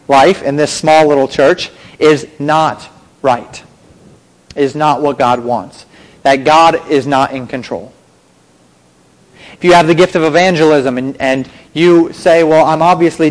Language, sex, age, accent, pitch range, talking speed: English, male, 30-49, American, 135-160 Hz, 155 wpm